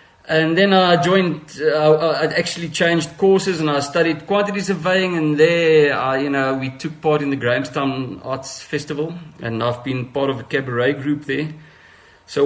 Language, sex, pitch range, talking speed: English, male, 120-155 Hz, 180 wpm